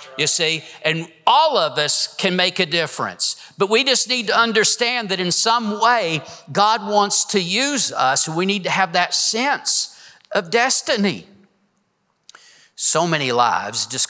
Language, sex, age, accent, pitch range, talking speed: English, male, 50-69, American, 150-200 Hz, 160 wpm